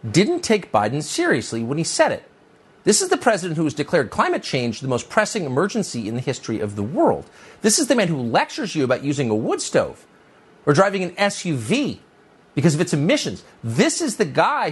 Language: English